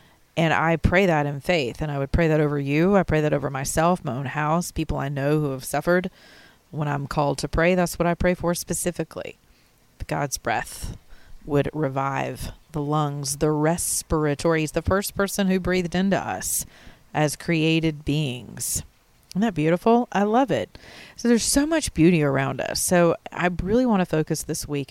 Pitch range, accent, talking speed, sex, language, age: 145-180 Hz, American, 190 wpm, female, English, 30-49